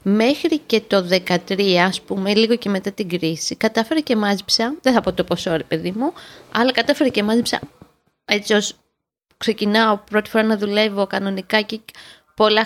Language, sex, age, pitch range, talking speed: Greek, female, 20-39, 195-250 Hz, 165 wpm